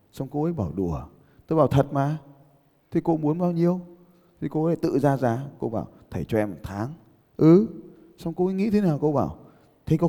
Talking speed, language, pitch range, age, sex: 225 wpm, Vietnamese, 100-160 Hz, 20-39, male